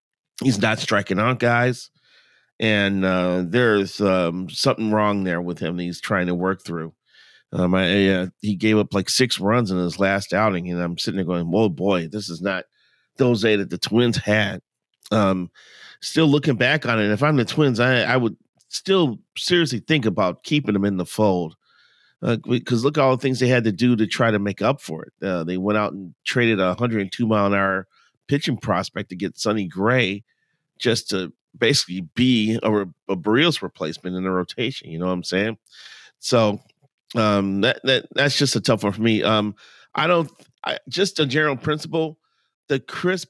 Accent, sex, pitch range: American, male, 95-125 Hz